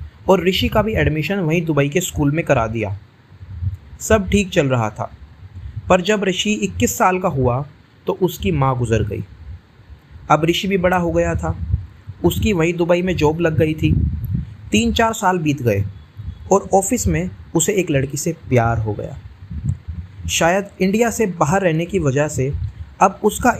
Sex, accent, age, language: male, native, 30-49, Hindi